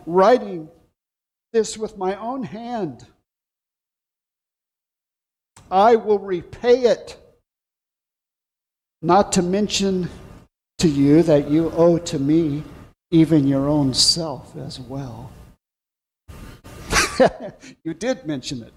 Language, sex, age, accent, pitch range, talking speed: English, male, 60-79, American, 155-220 Hz, 95 wpm